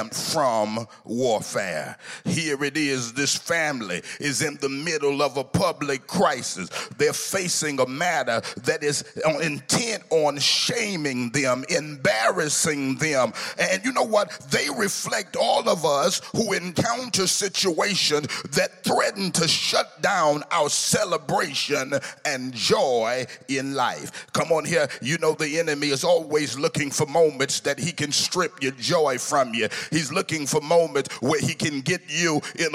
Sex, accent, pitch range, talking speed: male, American, 145-180 Hz, 145 wpm